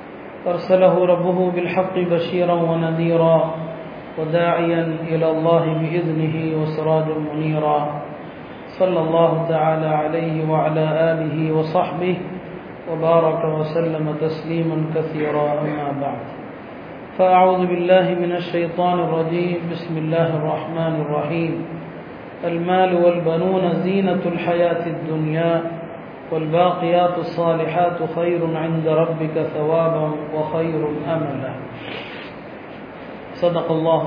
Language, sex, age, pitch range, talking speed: Tamil, male, 40-59, 160-180 Hz, 85 wpm